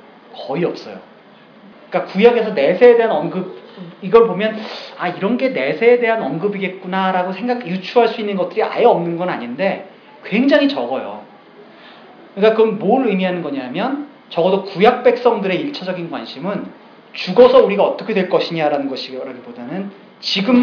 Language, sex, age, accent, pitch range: Korean, male, 40-59, native, 185-245 Hz